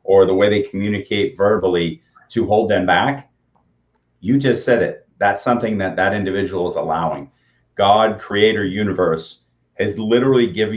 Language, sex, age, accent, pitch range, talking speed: English, male, 30-49, American, 95-120 Hz, 150 wpm